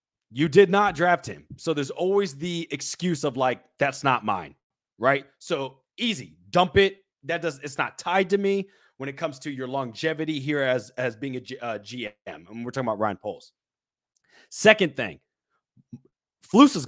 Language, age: English, 30-49